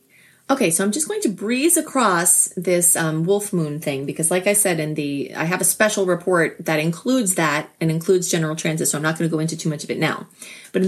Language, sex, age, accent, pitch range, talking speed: English, female, 30-49, American, 155-205 Hz, 250 wpm